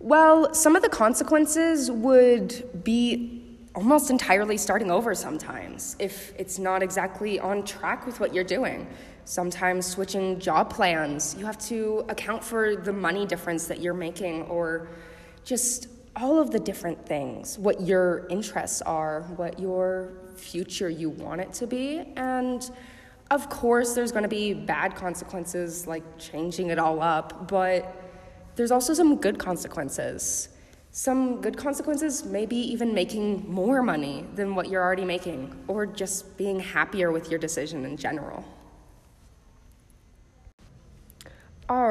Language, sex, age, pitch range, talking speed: English, female, 20-39, 175-245 Hz, 140 wpm